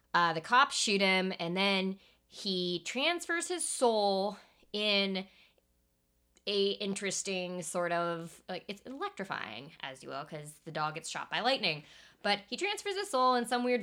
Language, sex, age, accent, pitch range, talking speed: English, female, 20-39, American, 165-215 Hz, 160 wpm